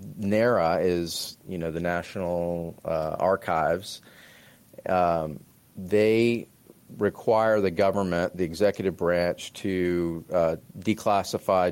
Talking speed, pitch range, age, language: 95 wpm, 85-95 Hz, 40-59, English